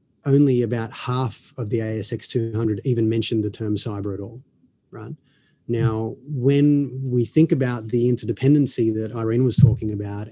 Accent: Australian